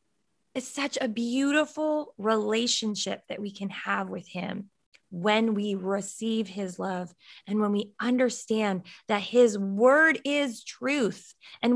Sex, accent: female, American